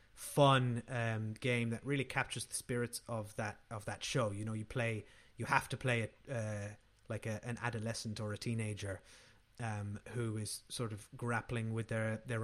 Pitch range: 110-135 Hz